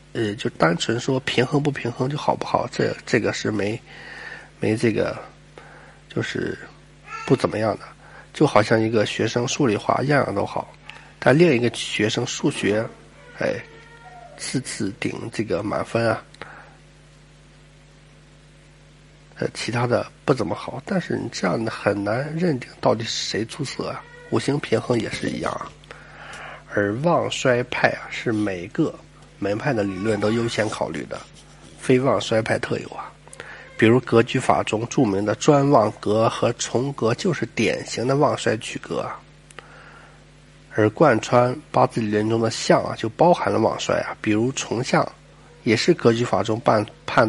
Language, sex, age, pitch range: Chinese, male, 50-69, 110-140 Hz